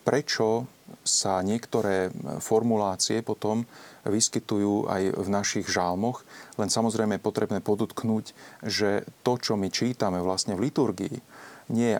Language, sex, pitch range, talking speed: Slovak, male, 100-115 Hz, 125 wpm